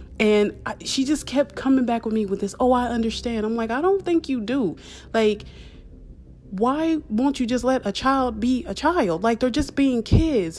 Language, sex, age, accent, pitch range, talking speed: English, female, 30-49, American, 200-260 Hz, 205 wpm